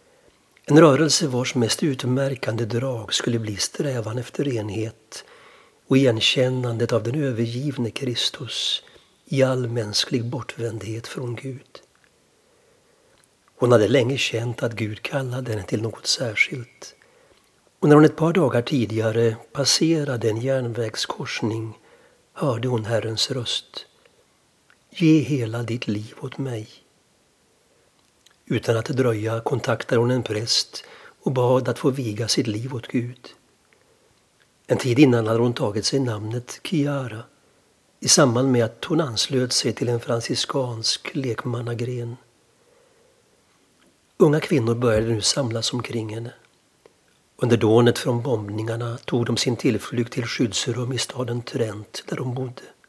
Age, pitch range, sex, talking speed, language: 60-79, 115-140 Hz, male, 130 wpm, Swedish